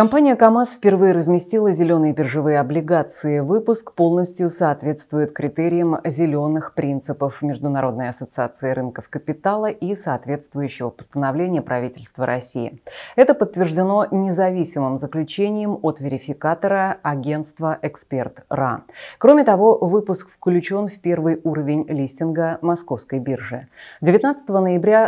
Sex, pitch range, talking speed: female, 145-190 Hz, 105 wpm